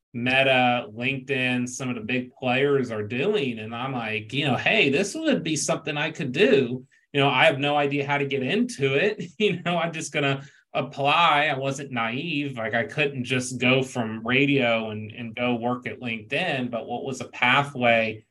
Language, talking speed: English, 200 wpm